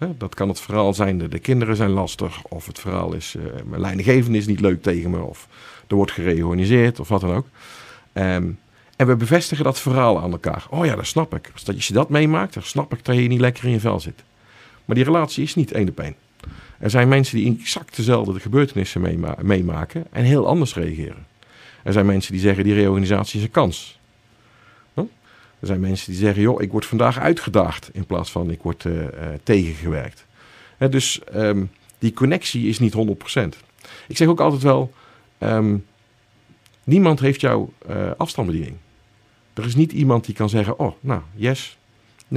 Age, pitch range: 50-69, 100-130 Hz